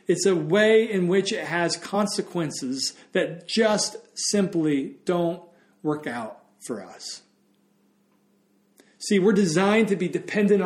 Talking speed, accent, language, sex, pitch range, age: 125 wpm, American, English, male, 145-205 Hz, 40-59